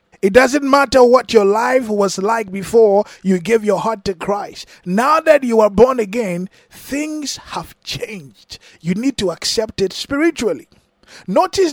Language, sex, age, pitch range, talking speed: English, male, 20-39, 205-280 Hz, 160 wpm